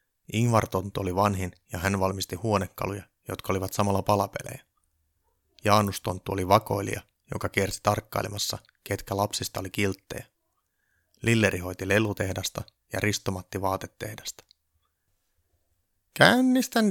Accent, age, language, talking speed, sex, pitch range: native, 30-49, Finnish, 100 wpm, male, 95-120 Hz